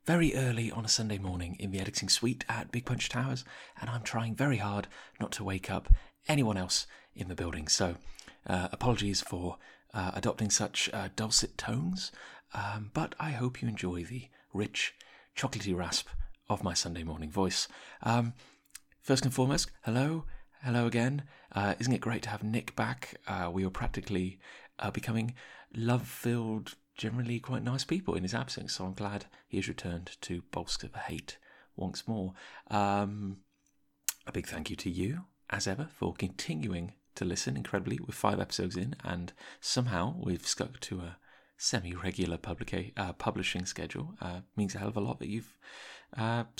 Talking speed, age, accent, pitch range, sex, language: 170 wpm, 30-49, British, 95-125 Hz, male, English